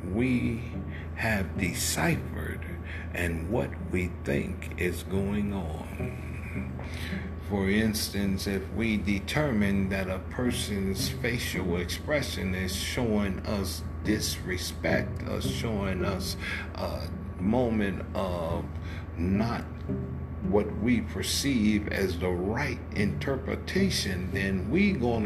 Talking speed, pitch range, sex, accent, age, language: 95 wpm, 85-105 Hz, male, American, 60-79, English